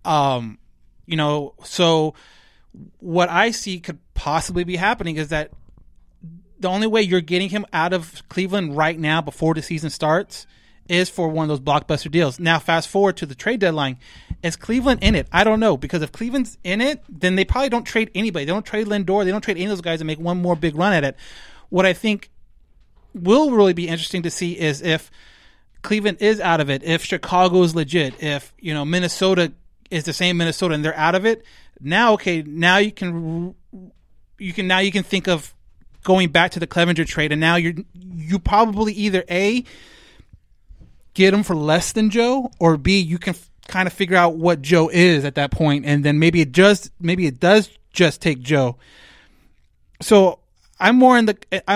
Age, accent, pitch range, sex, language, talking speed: 30-49, American, 160-200 Hz, male, English, 200 wpm